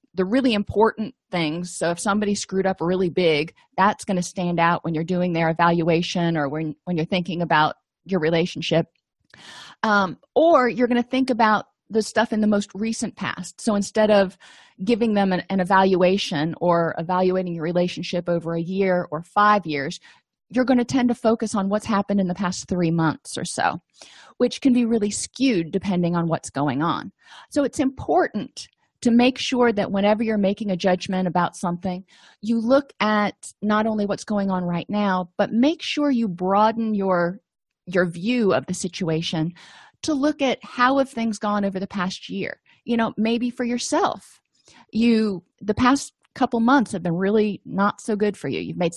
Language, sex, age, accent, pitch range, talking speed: English, female, 30-49, American, 175-230 Hz, 185 wpm